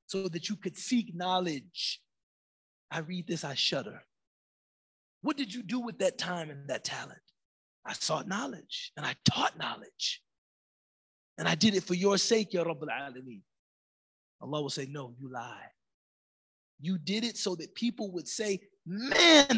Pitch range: 155-220 Hz